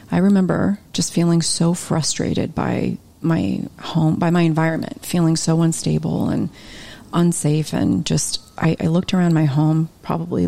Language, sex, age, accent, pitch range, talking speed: English, female, 30-49, American, 155-175 Hz, 150 wpm